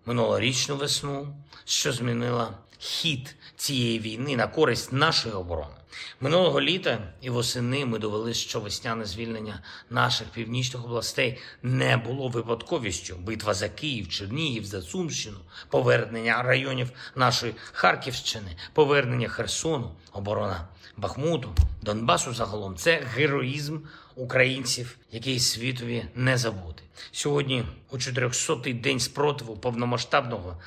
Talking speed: 110 wpm